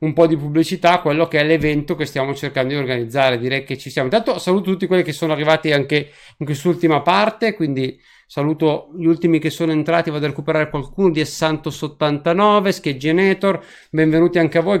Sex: male